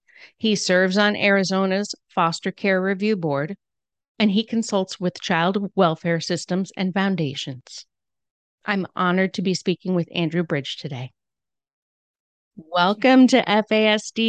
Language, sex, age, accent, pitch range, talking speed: English, female, 40-59, American, 175-205 Hz, 120 wpm